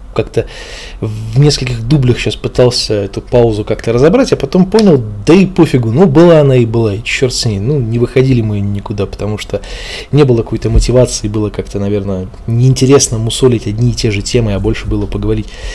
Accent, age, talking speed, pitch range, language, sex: native, 20-39, 190 wpm, 105-135 Hz, Russian, male